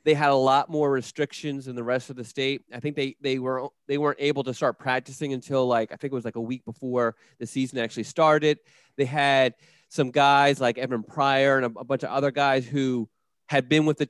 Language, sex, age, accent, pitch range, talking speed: English, male, 30-49, American, 130-150 Hz, 235 wpm